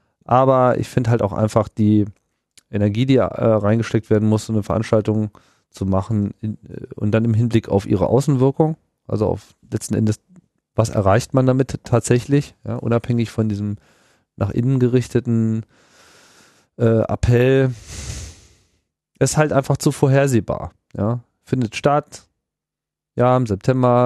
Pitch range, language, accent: 100-125 Hz, German, German